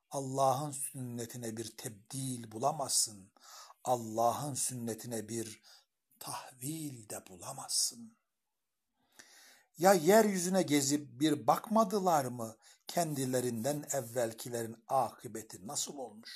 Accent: native